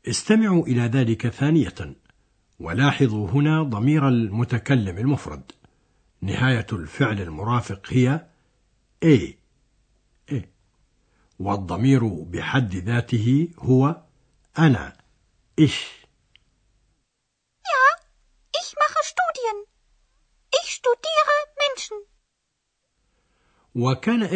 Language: Arabic